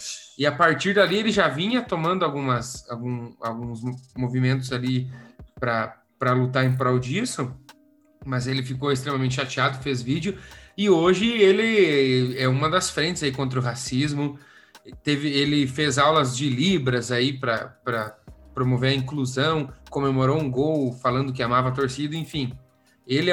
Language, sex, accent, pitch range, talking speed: Portuguese, male, Brazilian, 130-180 Hz, 145 wpm